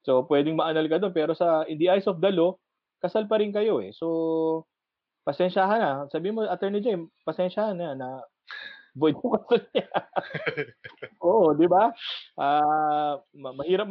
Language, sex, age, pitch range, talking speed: English, male, 20-39, 145-205 Hz, 145 wpm